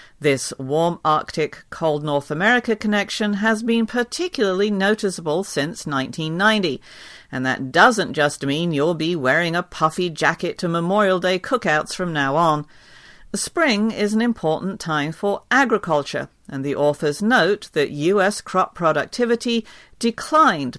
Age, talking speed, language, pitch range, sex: 50-69, 135 wpm, English, 150-210 Hz, female